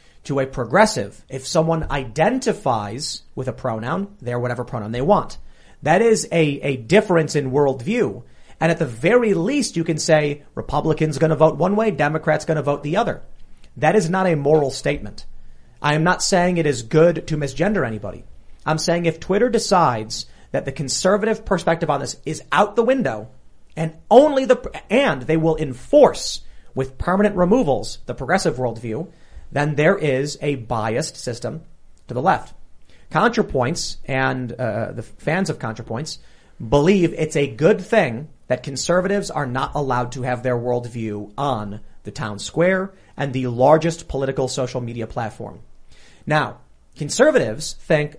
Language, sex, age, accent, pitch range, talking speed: English, male, 30-49, American, 125-170 Hz, 160 wpm